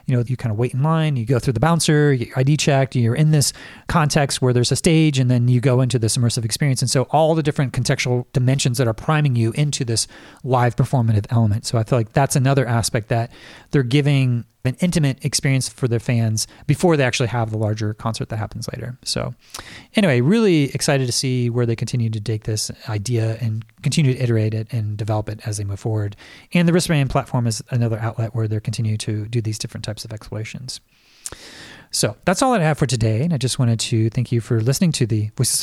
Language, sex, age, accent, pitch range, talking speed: English, male, 30-49, American, 115-140 Hz, 225 wpm